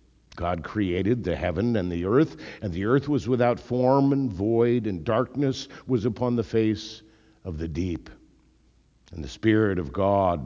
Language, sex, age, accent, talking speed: English, male, 50-69, American, 165 wpm